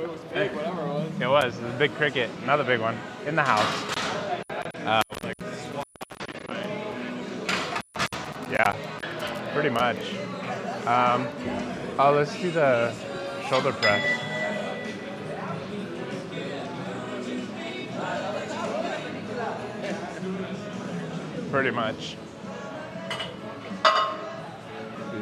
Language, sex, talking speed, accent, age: English, male, 80 wpm, American, 20-39